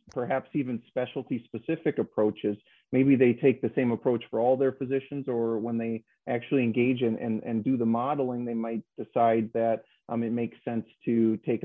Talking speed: 185 wpm